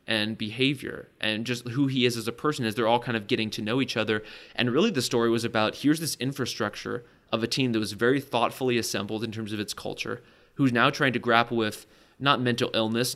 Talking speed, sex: 235 wpm, male